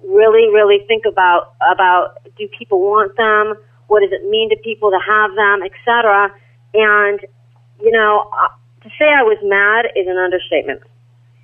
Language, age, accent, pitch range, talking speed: English, 40-59, American, 190-250 Hz, 165 wpm